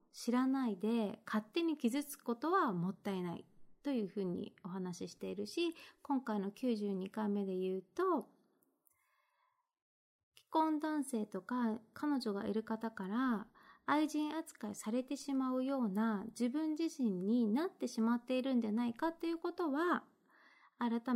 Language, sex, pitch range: Japanese, female, 200-285 Hz